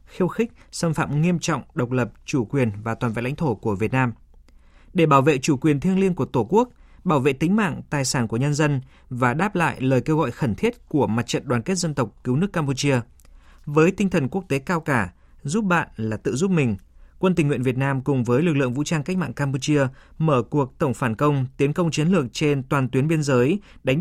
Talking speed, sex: 240 wpm, male